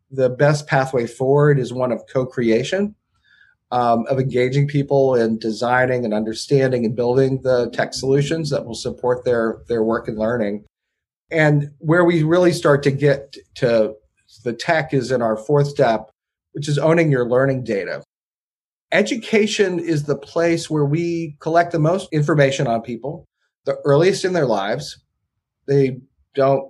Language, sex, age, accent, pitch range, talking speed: English, male, 30-49, American, 120-145 Hz, 155 wpm